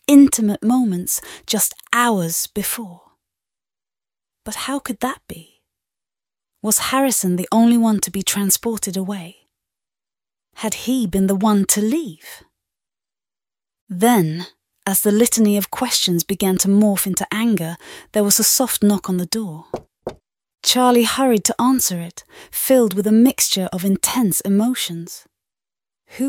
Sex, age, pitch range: female, 30-49, 185-235 Hz